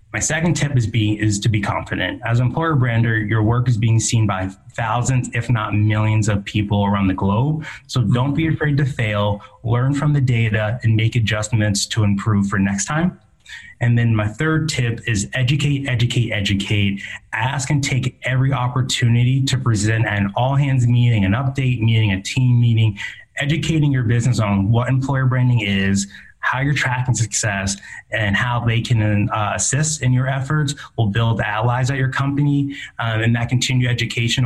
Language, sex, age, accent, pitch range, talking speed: English, male, 20-39, American, 105-125 Hz, 180 wpm